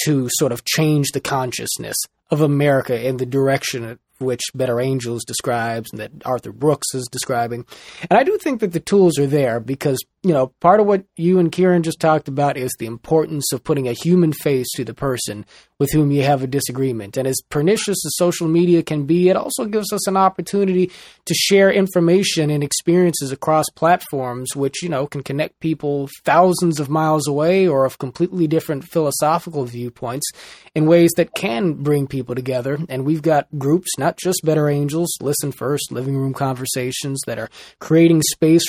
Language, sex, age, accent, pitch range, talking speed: English, male, 30-49, American, 135-165 Hz, 190 wpm